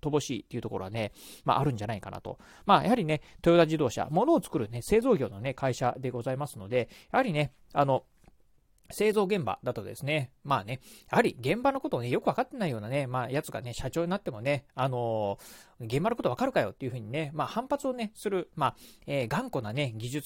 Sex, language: male, Japanese